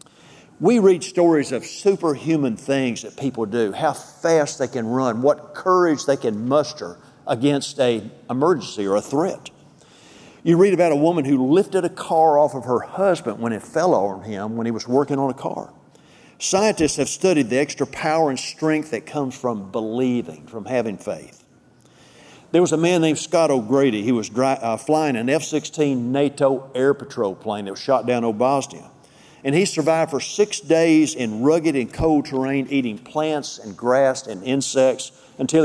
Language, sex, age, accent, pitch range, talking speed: English, male, 50-69, American, 125-160 Hz, 180 wpm